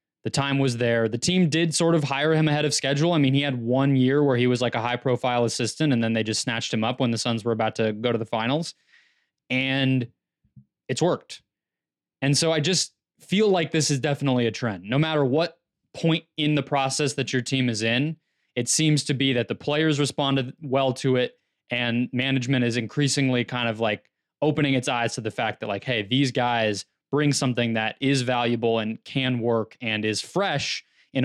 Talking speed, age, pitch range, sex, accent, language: 215 wpm, 20-39, 120-145 Hz, male, American, English